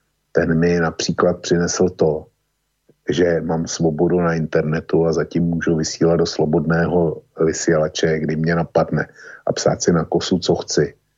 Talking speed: 145 wpm